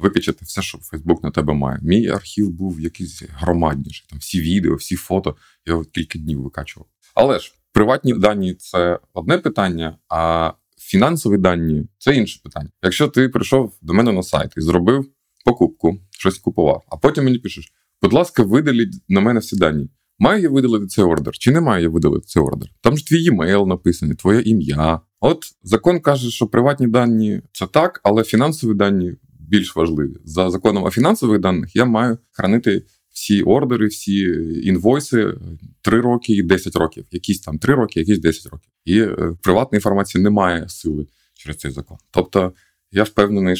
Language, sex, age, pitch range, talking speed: Ukrainian, male, 20-39, 80-110 Hz, 170 wpm